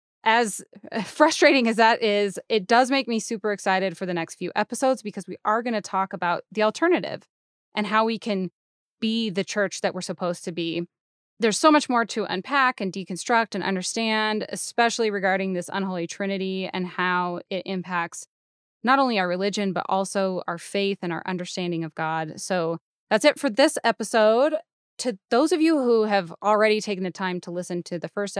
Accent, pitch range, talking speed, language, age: American, 185-220 Hz, 190 wpm, English, 10-29